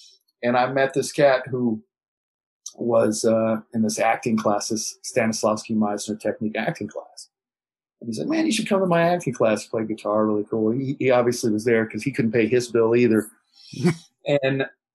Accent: American